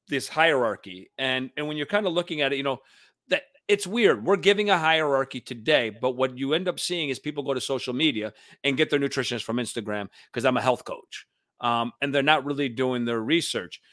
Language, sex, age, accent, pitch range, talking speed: English, male, 40-59, American, 125-160 Hz, 225 wpm